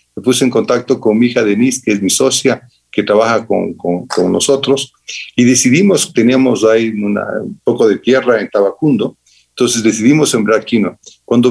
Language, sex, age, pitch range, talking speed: Spanish, male, 50-69, 105-130 Hz, 175 wpm